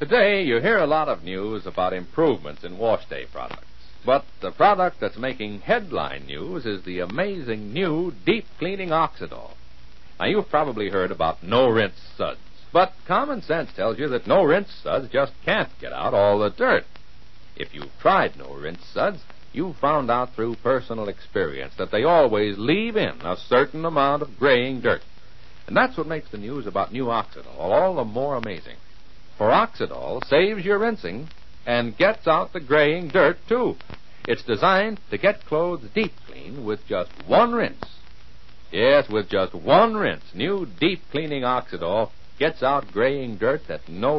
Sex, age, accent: male, 60-79, American